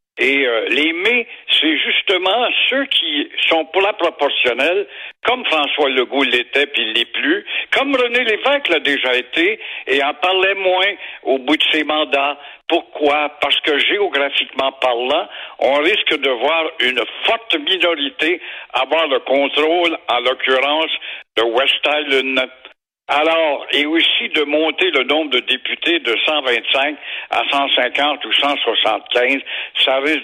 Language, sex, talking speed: French, male, 145 wpm